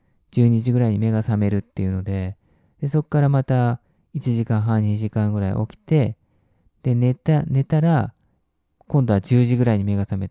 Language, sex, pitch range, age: Japanese, male, 100-135 Hz, 20-39